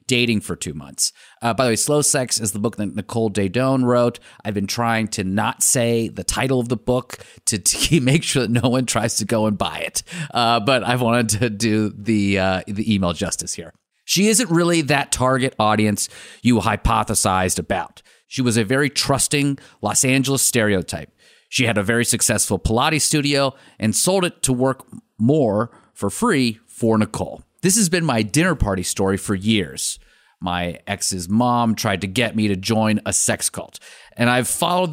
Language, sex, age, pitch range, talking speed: English, male, 30-49, 105-130 Hz, 190 wpm